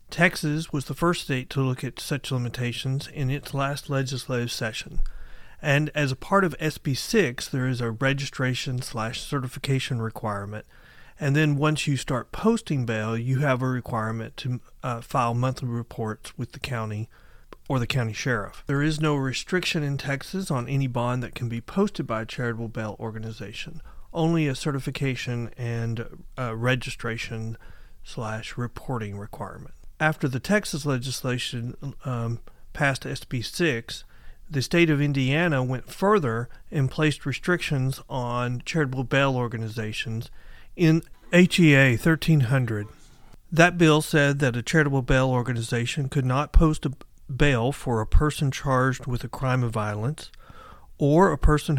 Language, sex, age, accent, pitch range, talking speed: English, male, 40-59, American, 115-145 Hz, 145 wpm